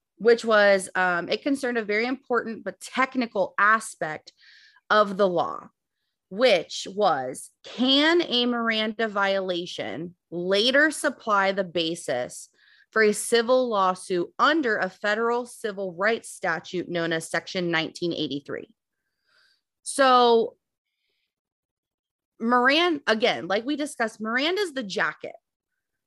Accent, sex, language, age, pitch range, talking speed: American, female, English, 30-49, 190-255 Hz, 110 wpm